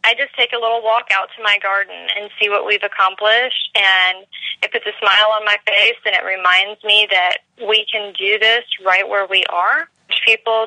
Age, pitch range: 20-39, 190-215 Hz